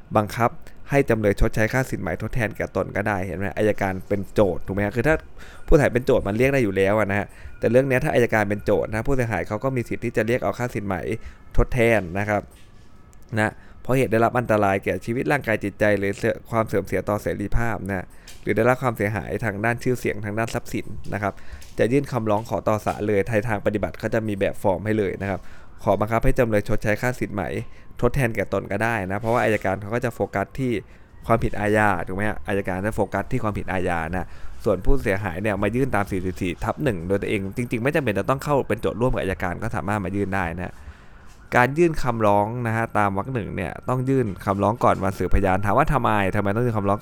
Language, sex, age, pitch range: Thai, male, 20-39, 100-115 Hz